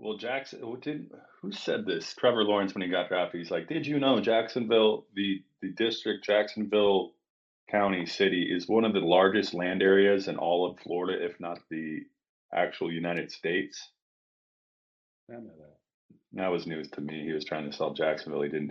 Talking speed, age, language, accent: 170 wpm, 30-49, English, American